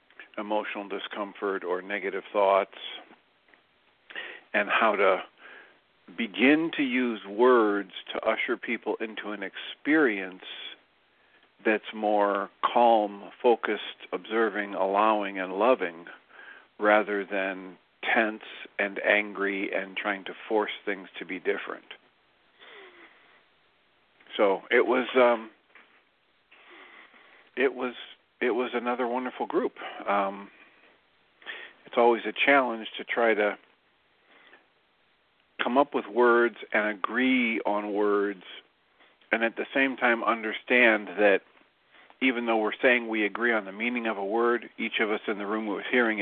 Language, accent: English, American